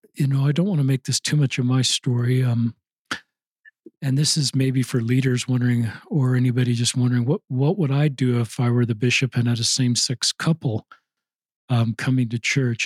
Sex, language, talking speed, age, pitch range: male, English, 205 wpm, 50-69, 125-150 Hz